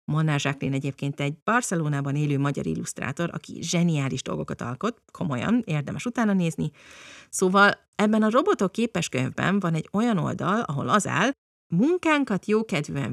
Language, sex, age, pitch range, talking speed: Hungarian, female, 30-49, 155-225 Hz, 140 wpm